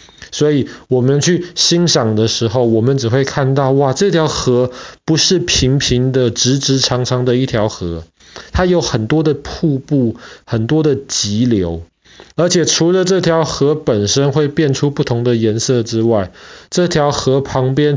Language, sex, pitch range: Chinese, male, 115-155 Hz